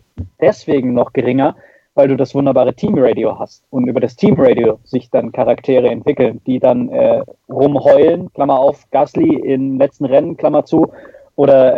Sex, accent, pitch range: male, German, 130-140 Hz